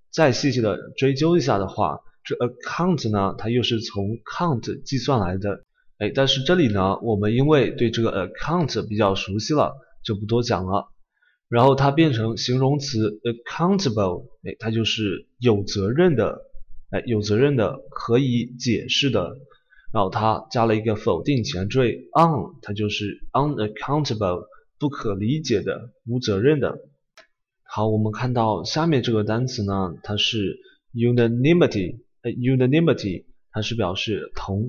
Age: 20-39